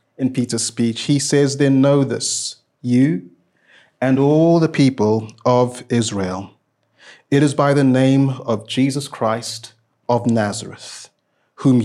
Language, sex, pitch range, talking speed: English, male, 120-150 Hz, 130 wpm